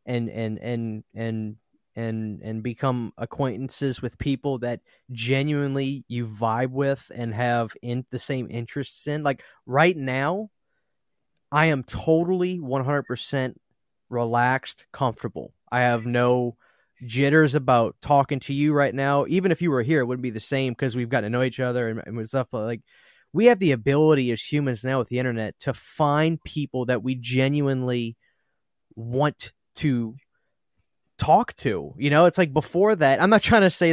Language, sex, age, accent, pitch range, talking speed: English, male, 20-39, American, 115-140 Hz, 165 wpm